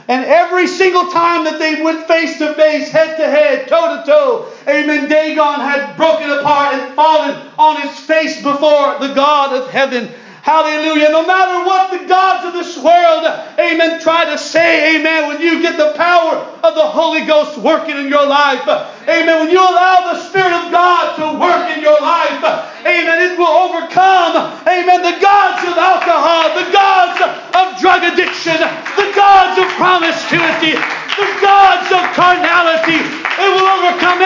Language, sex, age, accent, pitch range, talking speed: English, male, 40-59, American, 295-345 Hz, 170 wpm